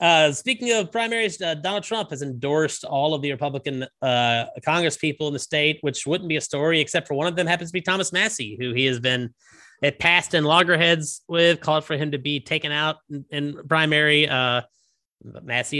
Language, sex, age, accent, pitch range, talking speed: English, male, 30-49, American, 120-160 Hz, 200 wpm